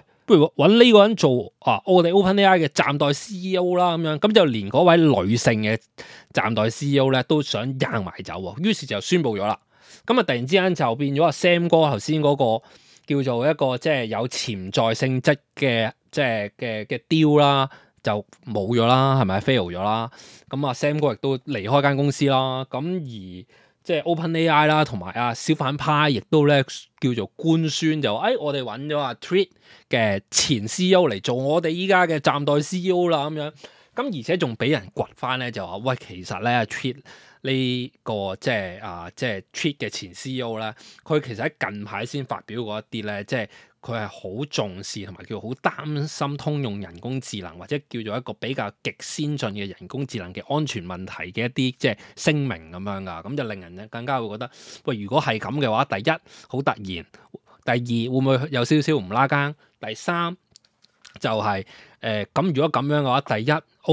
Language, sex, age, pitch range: Chinese, male, 20-39, 110-150 Hz